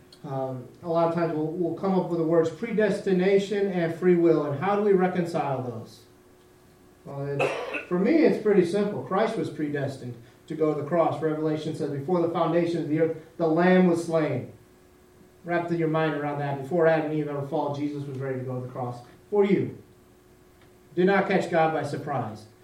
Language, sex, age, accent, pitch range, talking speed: English, male, 40-59, American, 145-175 Hz, 200 wpm